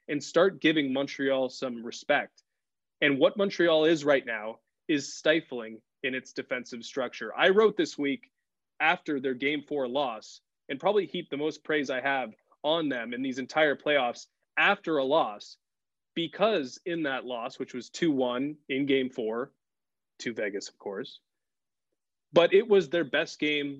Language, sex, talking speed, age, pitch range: English, male, 160 wpm, 20-39, 135-175 Hz